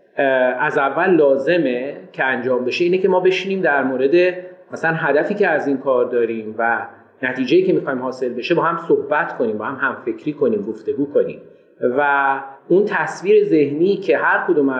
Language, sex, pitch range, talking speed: Persian, male, 135-215 Hz, 175 wpm